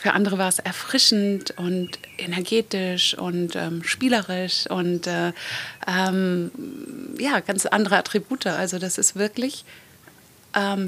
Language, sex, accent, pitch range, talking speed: German, female, German, 195-230 Hz, 115 wpm